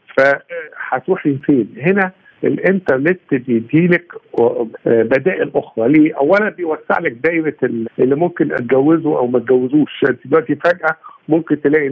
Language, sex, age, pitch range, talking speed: Arabic, male, 50-69, 130-175 Hz, 100 wpm